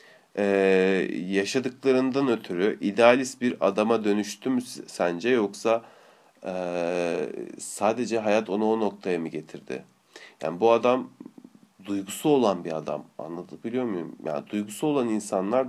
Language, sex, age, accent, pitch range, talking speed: Turkish, male, 40-59, native, 100-135 Hz, 110 wpm